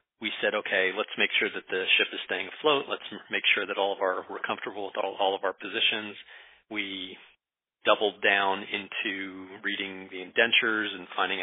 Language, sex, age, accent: English, male, 40-59, American